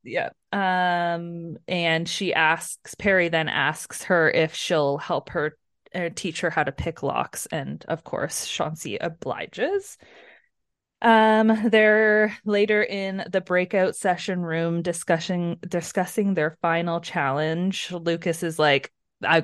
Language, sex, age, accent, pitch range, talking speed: English, female, 20-39, American, 155-180 Hz, 130 wpm